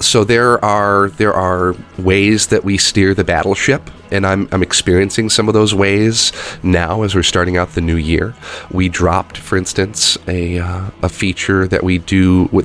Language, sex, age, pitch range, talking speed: Russian, male, 30-49, 85-100 Hz, 180 wpm